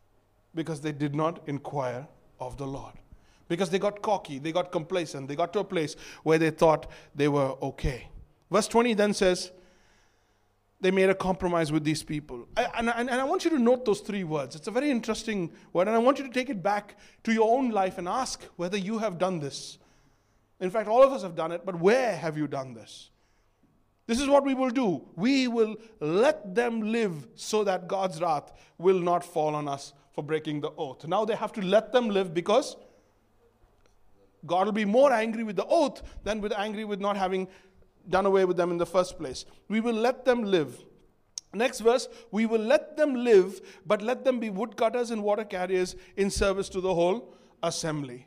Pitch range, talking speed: 150-225 Hz, 205 wpm